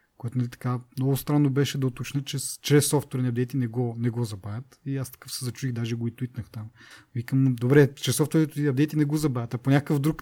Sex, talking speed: male, 235 wpm